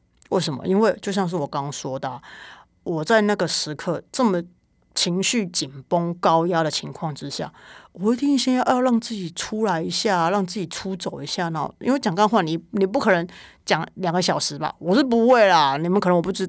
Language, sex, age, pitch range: Chinese, female, 30-49, 160-215 Hz